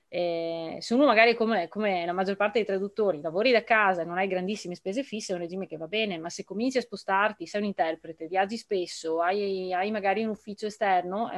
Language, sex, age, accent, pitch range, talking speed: Italian, female, 20-39, native, 180-225 Hz, 225 wpm